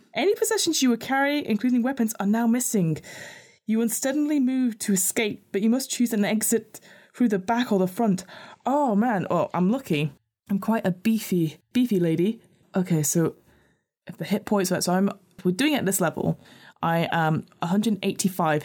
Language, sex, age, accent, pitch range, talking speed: English, female, 20-39, British, 170-225 Hz, 175 wpm